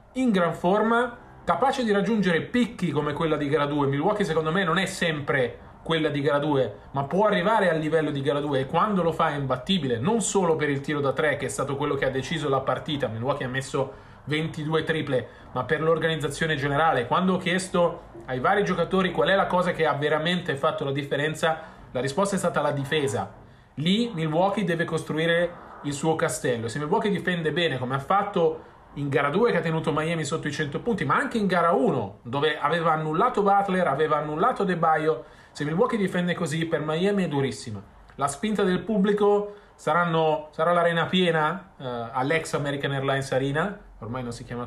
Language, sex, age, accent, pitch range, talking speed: Italian, male, 30-49, native, 145-190 Hz, 195 wpm